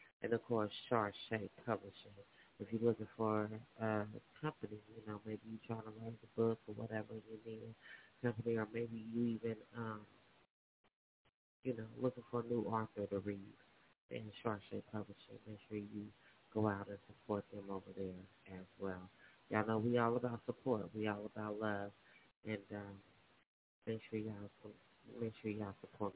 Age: 30-49